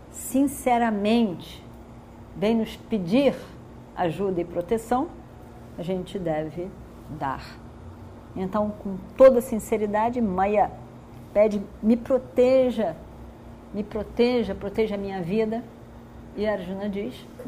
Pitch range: 175-230 Hz